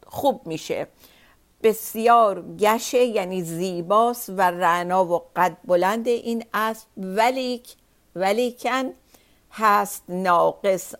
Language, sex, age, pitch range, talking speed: Persian, female, 50-69, 190-250 Hz, 95 wpm